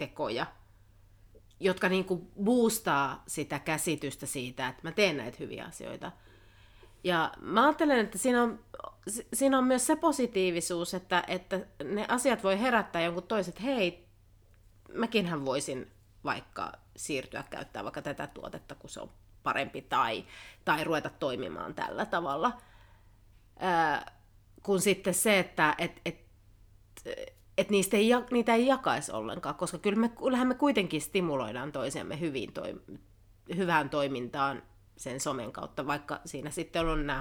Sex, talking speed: female, 135 wpm